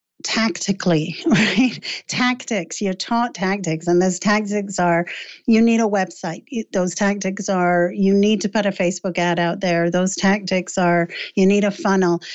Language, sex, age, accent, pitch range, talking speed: English, female, 50-69, American, 180-235 Hz, 160 wpm